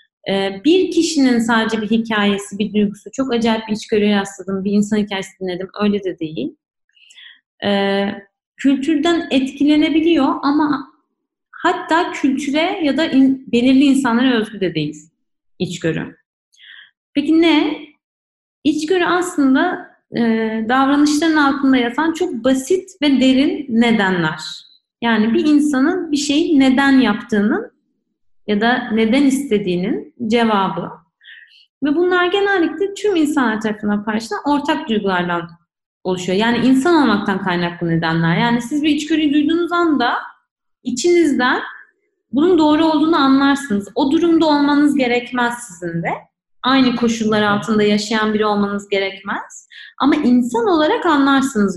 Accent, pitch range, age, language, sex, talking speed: native, 210-305 Hz, 30-49, Turkish, female, 115 wpm